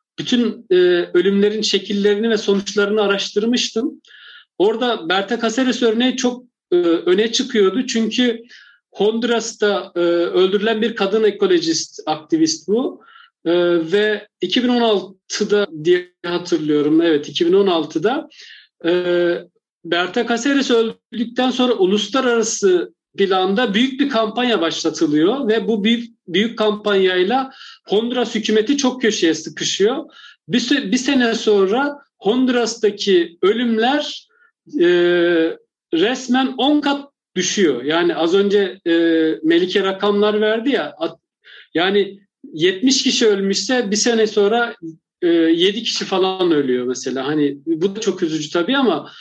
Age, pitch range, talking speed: 50-69, 190-255 Hz, 110 wpm